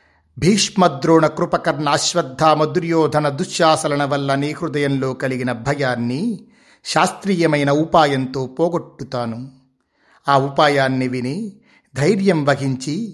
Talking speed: 80 wpm